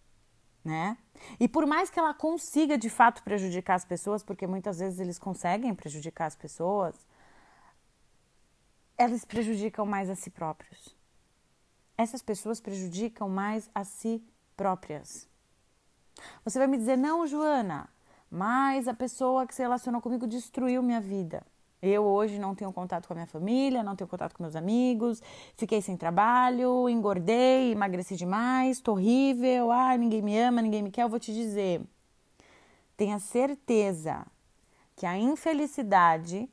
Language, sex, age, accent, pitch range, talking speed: Portuguese, female, 20-39, Brazilian, 190-245 Hz, 145 wpm